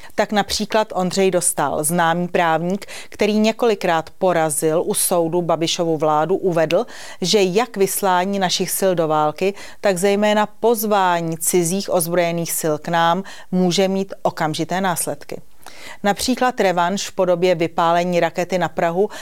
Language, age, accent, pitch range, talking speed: Czech, 40-59, native, 170-200 Hz, 130 wpm